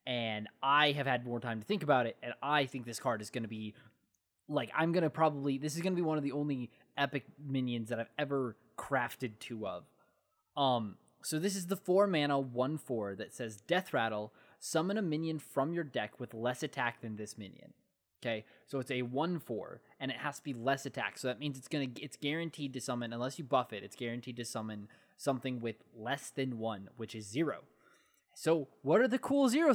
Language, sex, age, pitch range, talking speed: English, male, 20-39, 125-180 Hz, 215 wpm